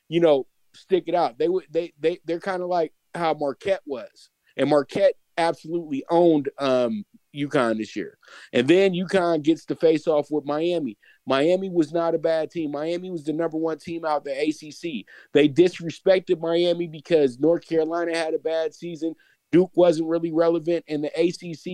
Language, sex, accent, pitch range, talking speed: English, male, American, 145-170 Hz, 180 wpm